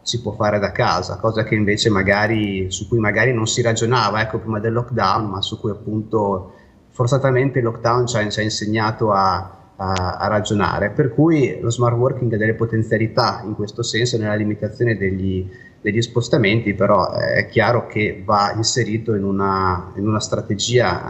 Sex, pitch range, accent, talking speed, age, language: male, 100-115 Hz, native, 170 wpm, 30-49, Italian